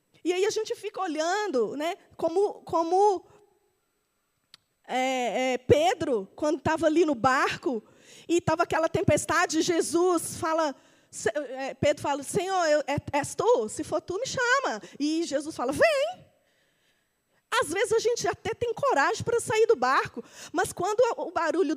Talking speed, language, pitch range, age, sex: 140 wpm, Portuguese, 300-425 Hz, 20-39, female